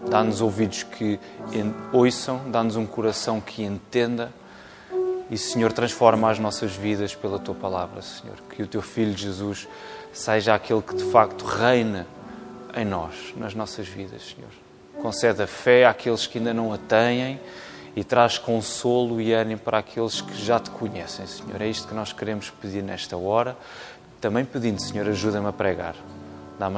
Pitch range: 100-120 Hz